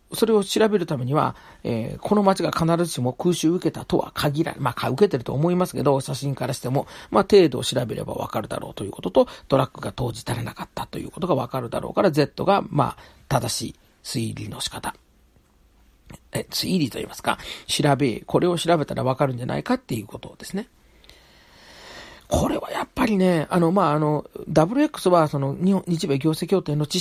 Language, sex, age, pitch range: Japanese, male, 40-59, 140-185 Hz